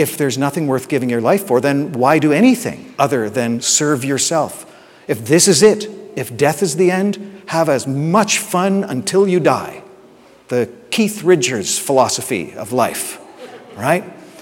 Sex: male